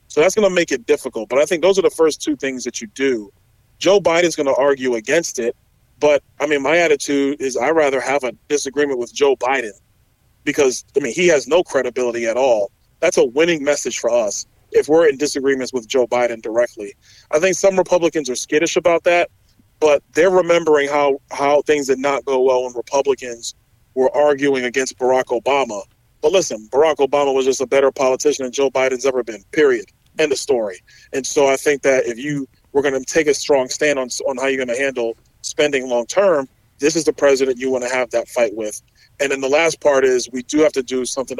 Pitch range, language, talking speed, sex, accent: 125-150 Hz, English, 220 wpm, male, American